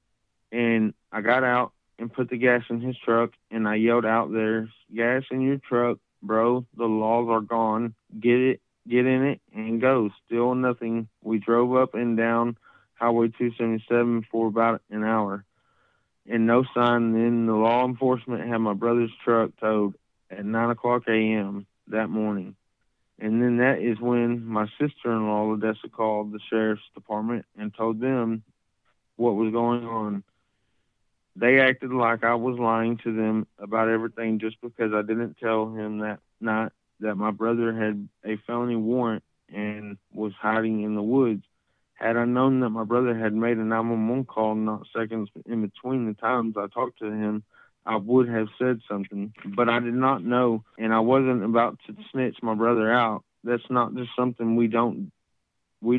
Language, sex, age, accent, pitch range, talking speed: English, male, 30-49, American, 110-120 Hz, 175 wpm